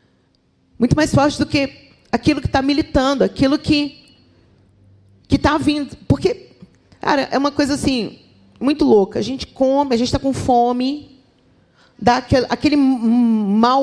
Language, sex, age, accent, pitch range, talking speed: Portuguese, female, 40-59, Brazilian, 195-270 Hz, 145 wpm